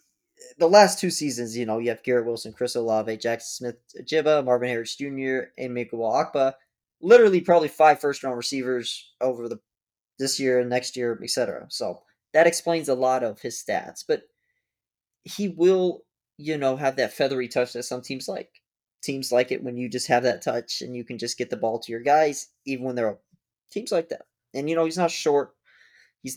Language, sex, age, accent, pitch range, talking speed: English, male, 20-39, American, 120-155 Hz, 205 wpm